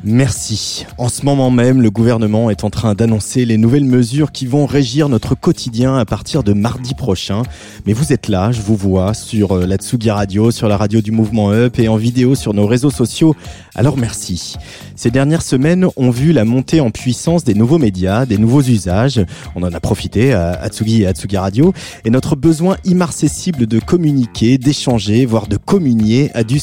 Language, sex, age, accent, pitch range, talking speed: French, male, 30-49, French, 105-135 Hz, 190 wpm